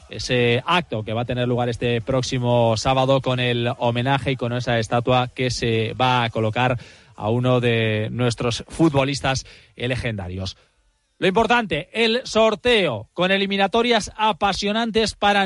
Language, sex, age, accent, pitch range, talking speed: Spanish, male, 30-49, Spanish, 130-190 Hz, 140 wpm